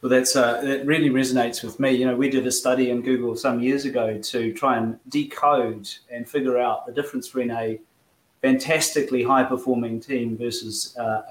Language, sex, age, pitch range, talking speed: English, male, 30-49, 120-140 Hz, 185 wpm